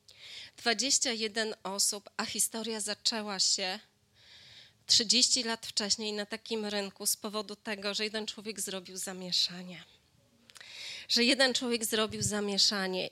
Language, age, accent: Polish, 20-39, native